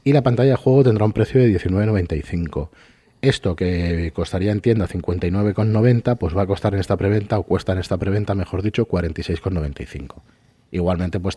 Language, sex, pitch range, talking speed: Spanish, male, 85-110 Hz, 175 wpm